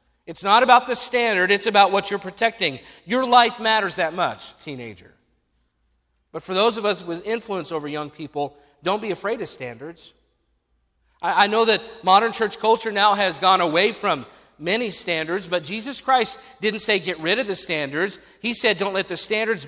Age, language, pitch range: 50-69, English, 175-225 Hz